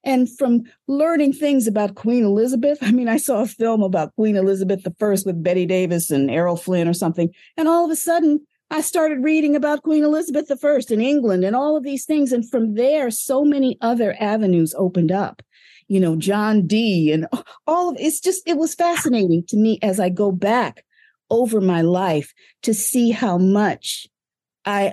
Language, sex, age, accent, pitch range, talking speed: English, female, 50-69, American, 185-250 Hz, 195 wpm